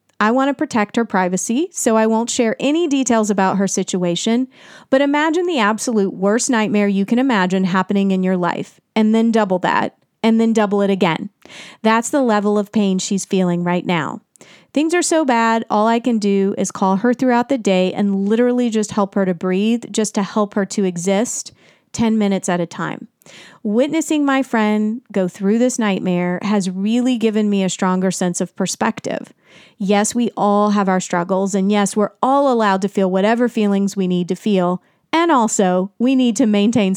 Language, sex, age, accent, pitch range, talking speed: English, female, 30-49, American, 190-245 Hz, 195 wpm